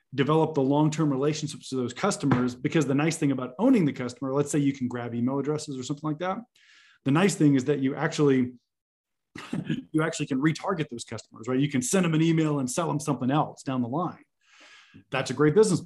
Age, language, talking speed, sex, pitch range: 30-49, English, 220 wpm, male, 125-155 Hz